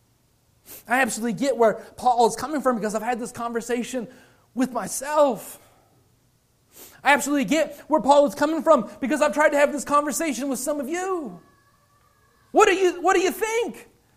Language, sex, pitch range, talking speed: English, male, 230-330 Hz, 165 wpm